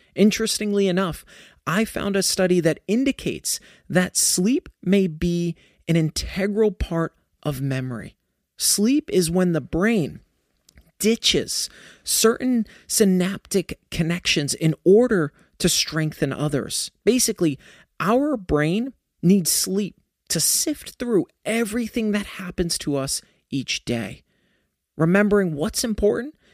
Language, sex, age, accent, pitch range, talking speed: English, male, 30-49, American, 150-200 Hz, 110 wpm